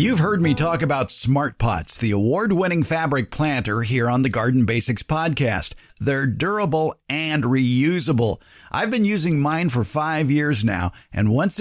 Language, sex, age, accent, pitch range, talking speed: English, male, 50-69, American, 125-175 Hz, 165 wpm